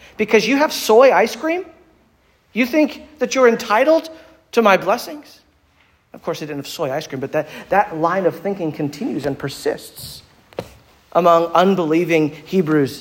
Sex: male